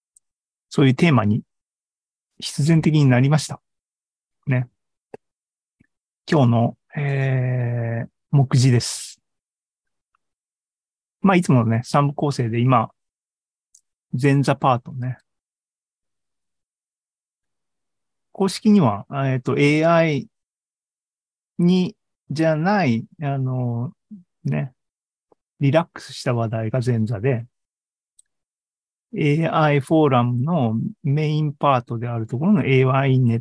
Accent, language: native, Japanese